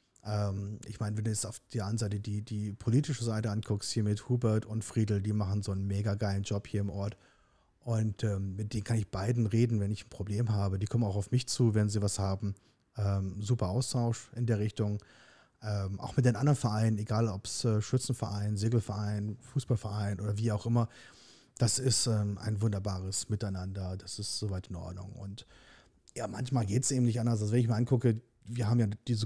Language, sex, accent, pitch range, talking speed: German, male, German, 105-125 Hz, 210 wpm